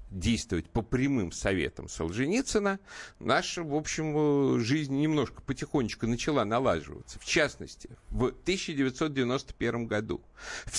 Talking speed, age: 105 wpm, 50-69